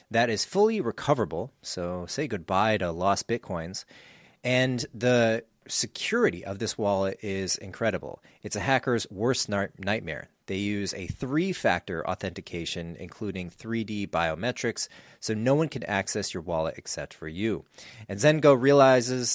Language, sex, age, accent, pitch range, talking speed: English, male, 30-49, American, 95-120 Hz, 135 wpm